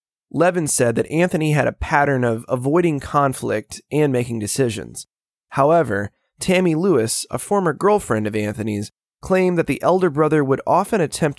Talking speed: 155 wpm